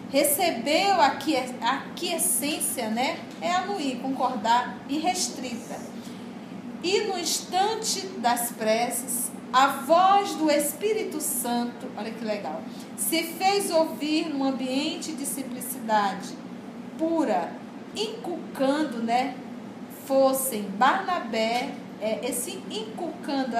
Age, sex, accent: 40-59, female, Brazilian